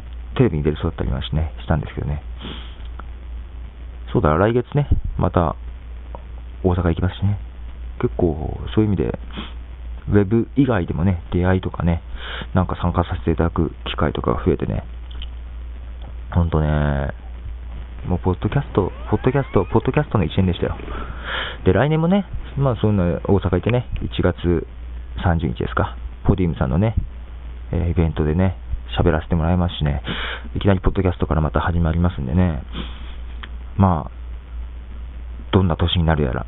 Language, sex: Japanese, male